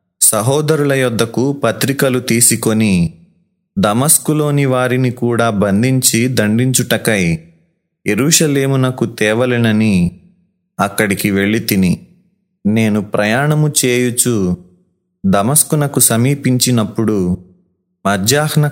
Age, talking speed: 30-49, 65 wpm